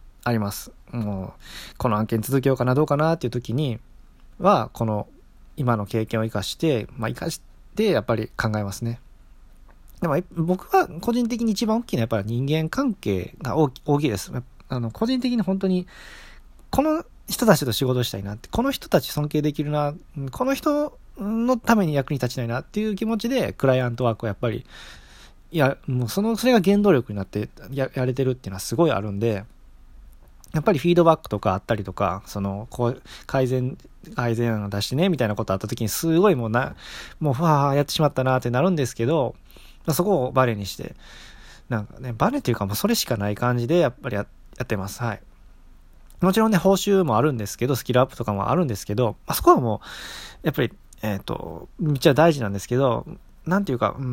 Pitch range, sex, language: 110-170 Hz, male, Japanese